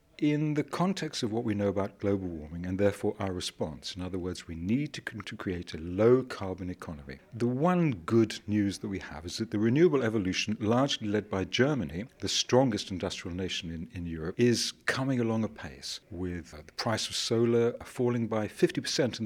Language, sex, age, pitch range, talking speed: English, male, 60-79, 95-120 Hz, 195 wpm